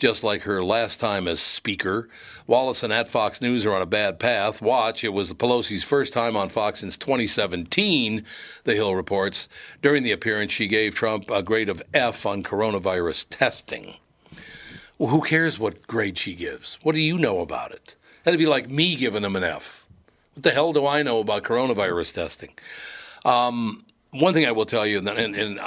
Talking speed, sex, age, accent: 190 wpm, male, 60-79, American